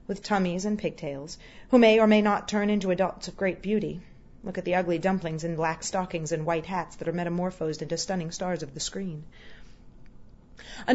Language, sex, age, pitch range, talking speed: English, female, 30-49, 165-205 Hz, 195 wpm